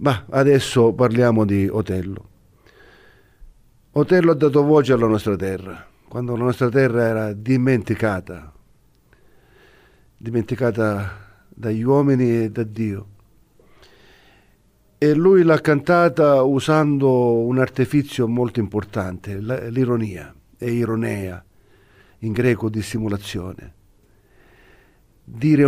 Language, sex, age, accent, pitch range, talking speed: Italian, male, 50-69, native, 100-130 Hz, 95 wpm